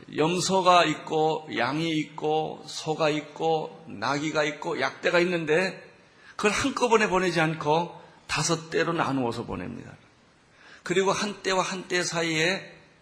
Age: 40-59